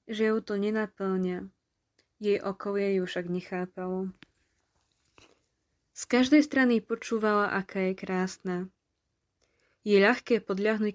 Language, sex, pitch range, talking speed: Slovak, female, 190-230 Hz, 105 wpm